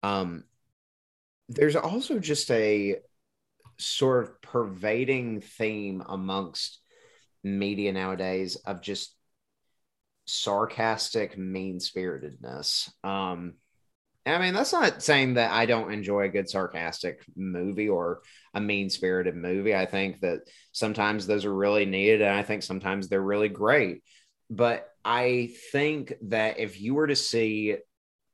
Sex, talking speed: male, 120 wpm